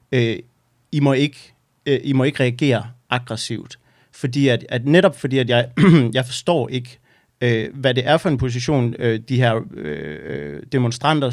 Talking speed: 145 wpm